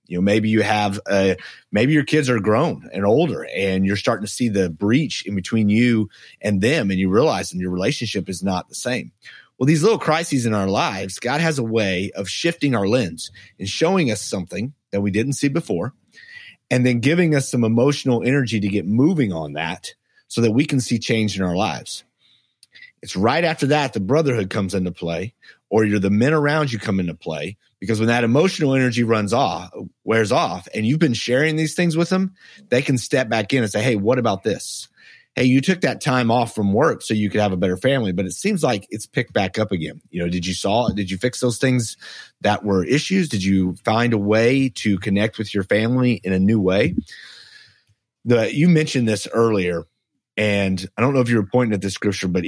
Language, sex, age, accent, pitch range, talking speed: English, male, 30-49, American, 100-130 Hz, 220 wpm